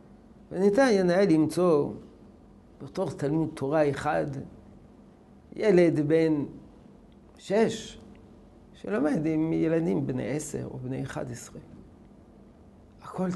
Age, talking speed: 50-69, 90 wpm